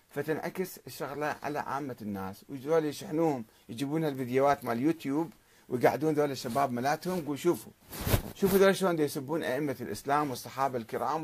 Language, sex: Arabic, male